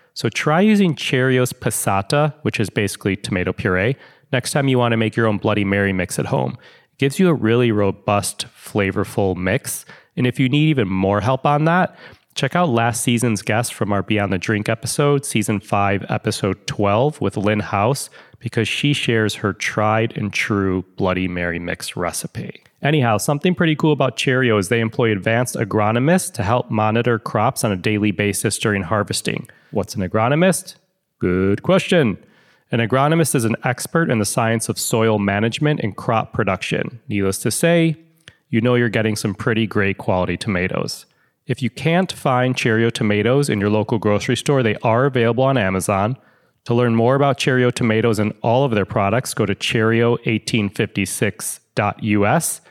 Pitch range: 105-135 Hz